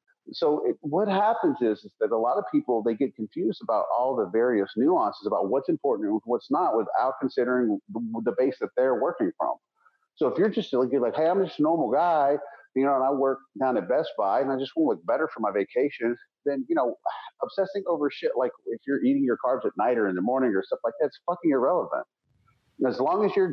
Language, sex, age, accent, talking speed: English, male, 40-59, American, 230 wpm